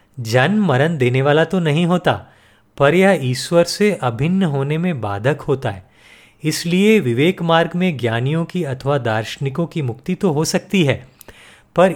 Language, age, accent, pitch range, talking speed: Hindi, 30-49, native, 125-180 Hz, 160 wpm